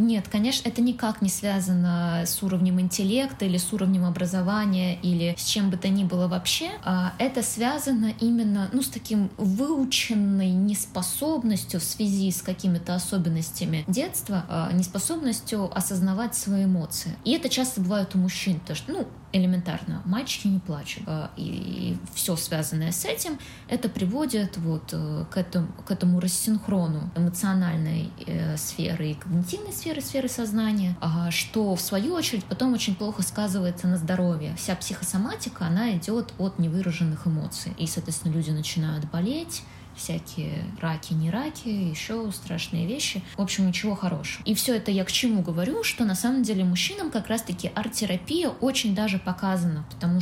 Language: Russian